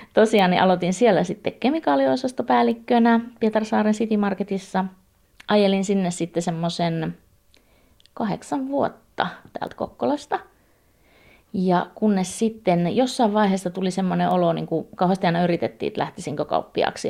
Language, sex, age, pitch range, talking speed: Finnish, female, 30-49, 170-210 Hz, 115 wpm